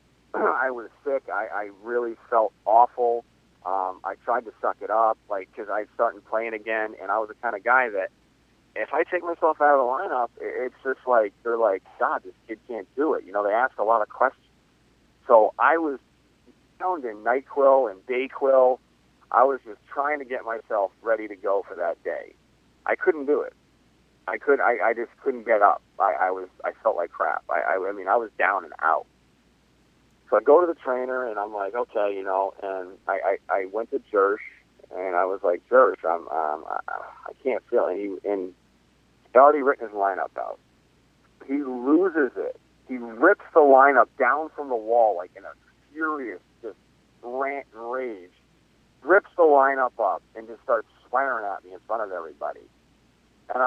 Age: 40-59